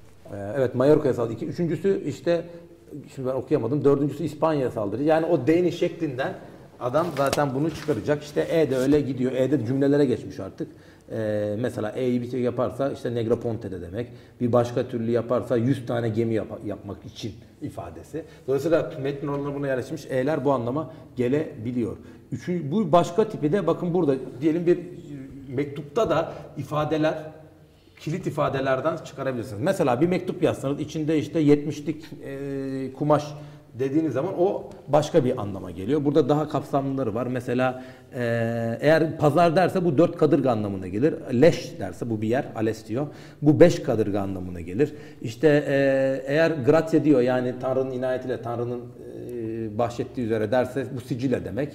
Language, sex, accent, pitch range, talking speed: English, male, Turkish, 120-155 Hz, 150 wpm